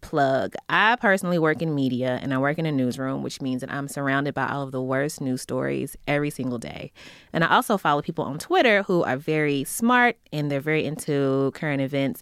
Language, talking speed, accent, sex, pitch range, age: English, 215 wpm, American, female, 140-195 Hz, 20-39